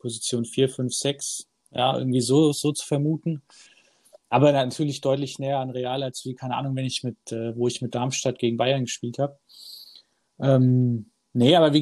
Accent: German